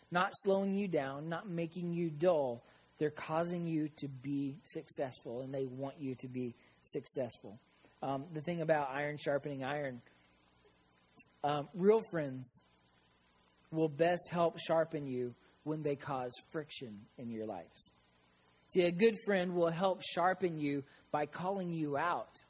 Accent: American